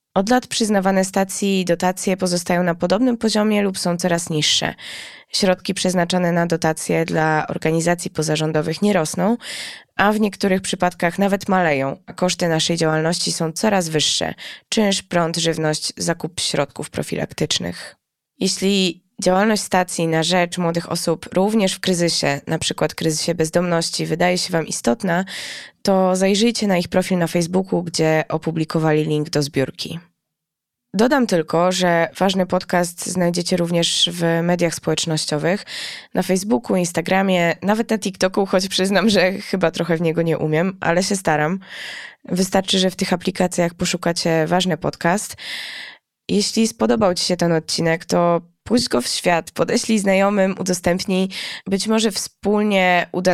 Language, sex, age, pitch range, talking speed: Polish, female, 20-39, 165-190 Hz, 140 wpm